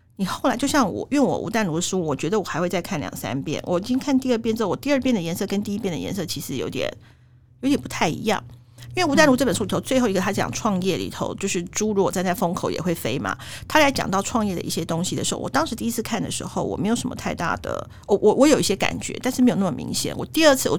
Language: Chinese